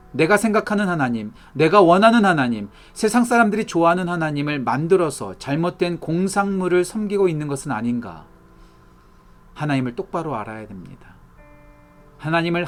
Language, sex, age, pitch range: Korean, male, 40-59, 125-175 Hz